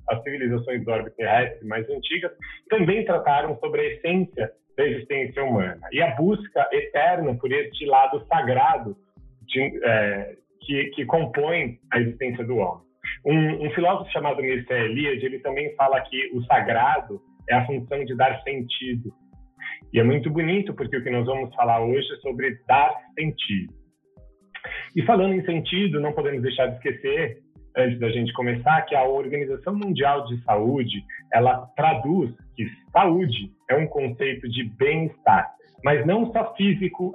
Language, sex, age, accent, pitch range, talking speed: Portuguese, male, 40-59, Brazilian, 125-175 Hz, 155 wpm